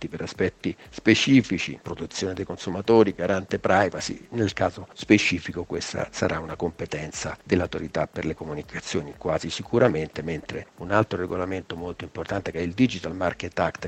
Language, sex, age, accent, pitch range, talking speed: Italian, male, 50-69, native, 90-110 Hz, 145 wpm